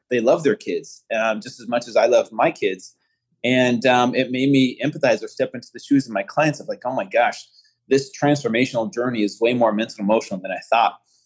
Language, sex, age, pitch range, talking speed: English, male, 20-39, 120-145 Hz, 235 wpm